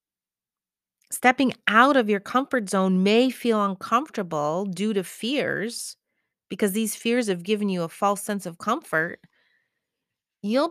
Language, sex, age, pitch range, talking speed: English, female, 30-49, 185-235 Hz, 135 wpm